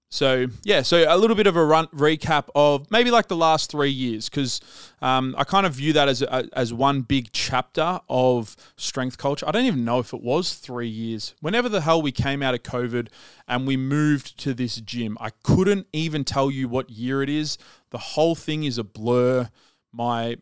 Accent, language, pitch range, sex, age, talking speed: Australian, English, 120-150 Hz, male, 20-39, 205 wpm